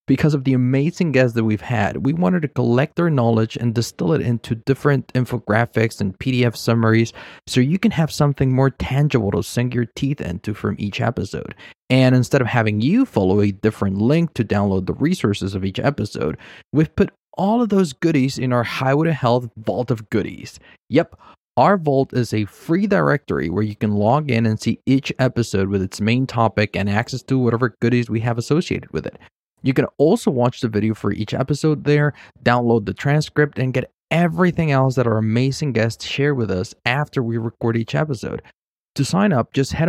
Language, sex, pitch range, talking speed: English, male, 110-145 Hz, 200 wpm